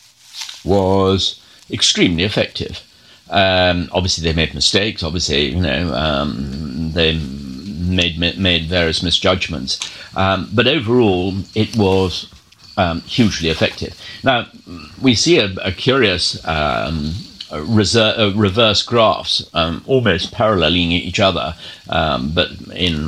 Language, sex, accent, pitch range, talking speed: English, male, British, 85-105 Hz, 115 wpm